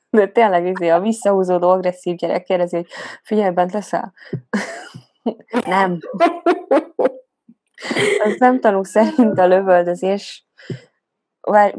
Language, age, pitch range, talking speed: Hungarian, 20-39, 175-215 Hz, 100 wpm